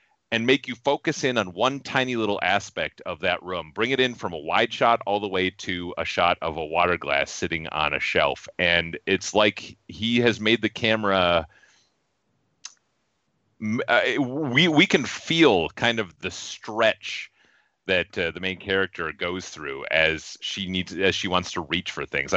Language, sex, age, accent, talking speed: English, male, 30-49, American, 180 wpm